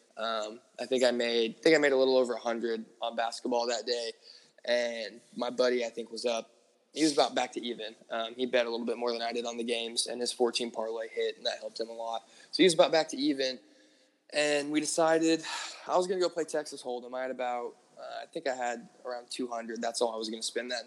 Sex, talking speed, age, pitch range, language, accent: male, 260 wpm, 20-39, 115-135 Hz, English, American